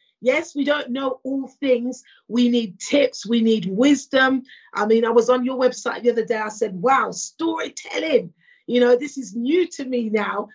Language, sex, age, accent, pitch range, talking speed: English, female, 40-59, British, 240-295 Hz, 195 wpm